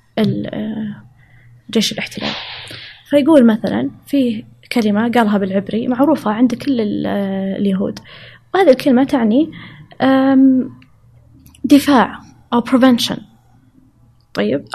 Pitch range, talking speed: 200-250 Hz, 75 wpm